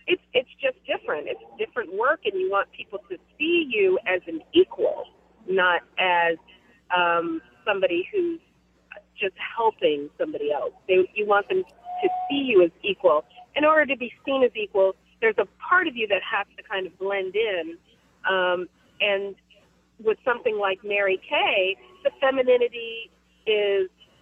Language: English